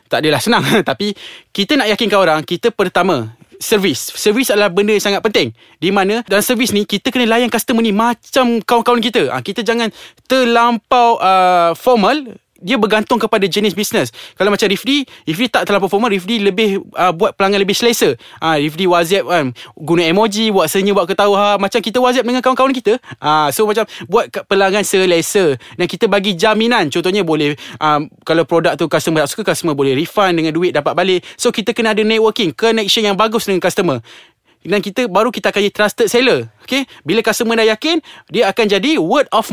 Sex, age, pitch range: male, 20-39, 180-230 Hz